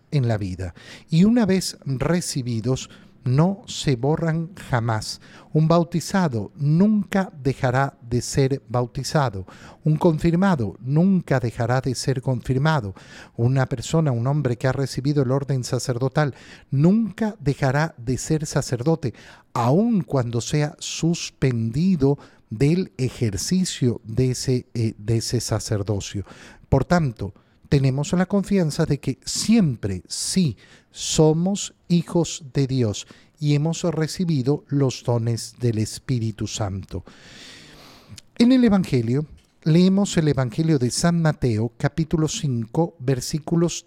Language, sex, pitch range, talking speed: Spanish, male, 120-160 Hz, 115 wpm